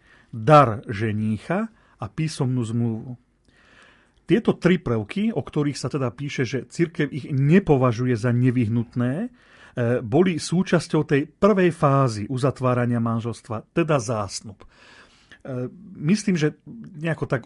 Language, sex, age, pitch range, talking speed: Slovak, male, 40-59, 120-165 Hz, 110 wpm